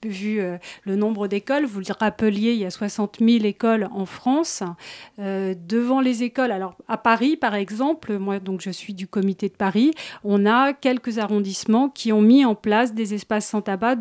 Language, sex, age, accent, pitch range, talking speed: French, female, 40-59, French, 200-245 Hz, 195 wpm